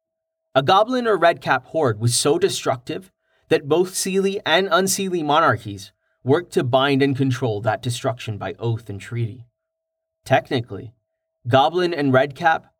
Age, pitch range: 30-49, 120-175 Hz